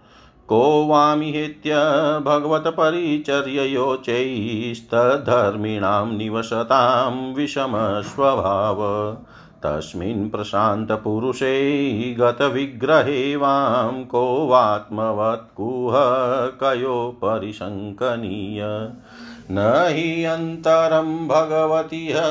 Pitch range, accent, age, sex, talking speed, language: 110-150 Hz, native, 50-69, male, 40 wpm, Hindi